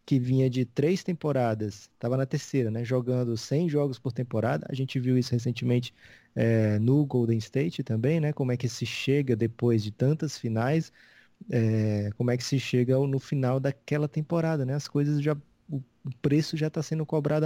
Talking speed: 185 wpm